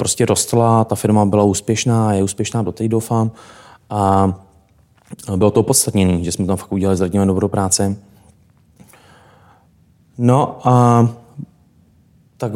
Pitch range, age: 100-115 Hz, 20-39